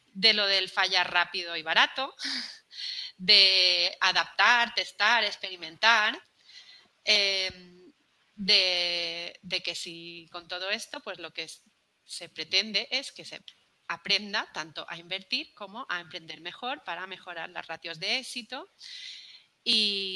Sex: female